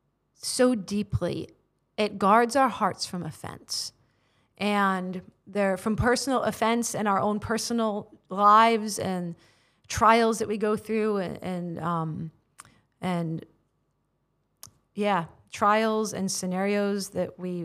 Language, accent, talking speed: English, American, 115 wpm